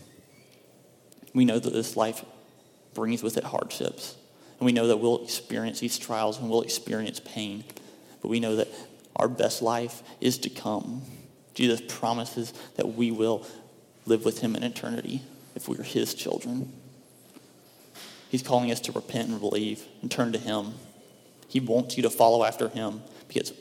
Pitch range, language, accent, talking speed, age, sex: 110-120 Hz, English, American, 165 wpm, 30-49, male